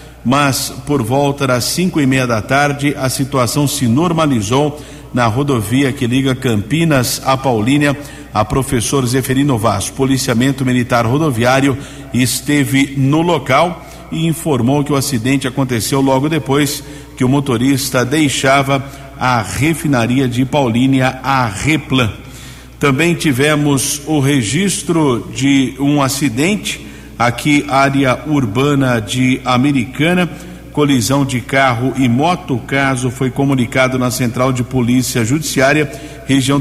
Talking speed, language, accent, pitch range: 125 wpm, Portuguese, Brazilian, 130-145 Hz